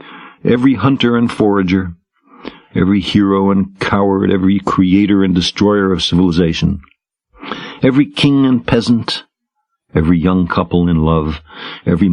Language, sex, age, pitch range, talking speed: English, male, 60-79, 90-120 Hz, 120 wpm